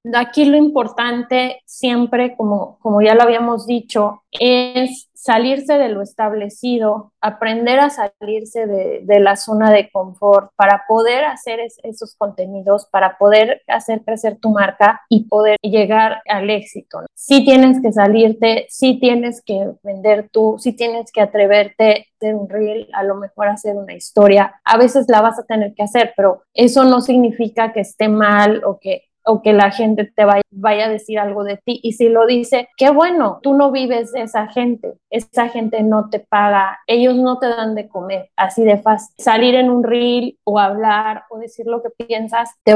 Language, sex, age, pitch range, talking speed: Spanish, female, 20-39, 210-240 Hz, 190 wpm